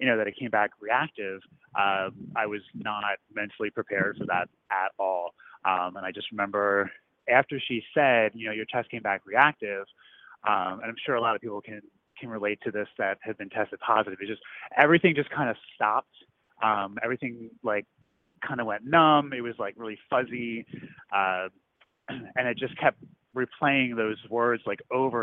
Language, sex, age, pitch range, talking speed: English, male, 20-39, 105-130 Hz, 190 wpm